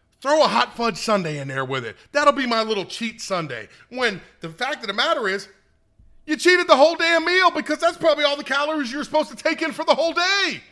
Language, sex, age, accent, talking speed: English, male, 40-59, American, 240 wpm